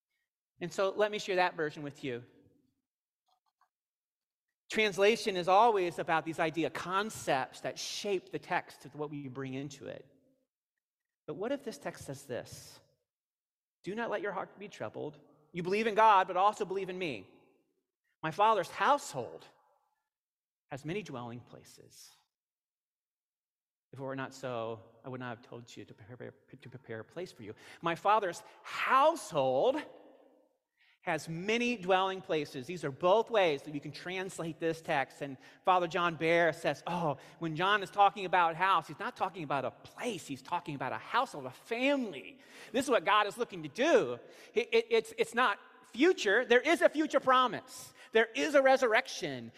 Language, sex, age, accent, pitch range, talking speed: English, male, 40-59, American, 150-245 Hz, 170 wpm